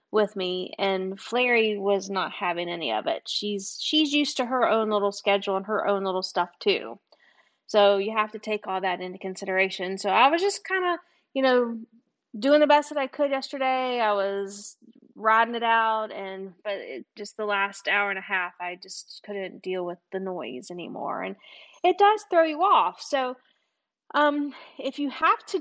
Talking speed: 195 wpm